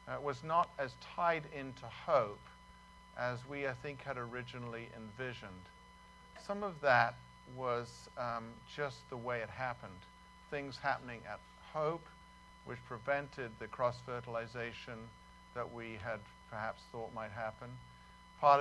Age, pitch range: 50-69, 110-130 Hz